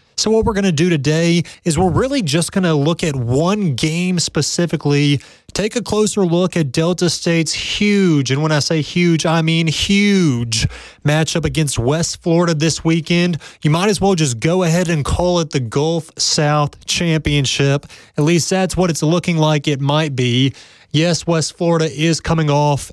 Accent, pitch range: American, 150-175 Hz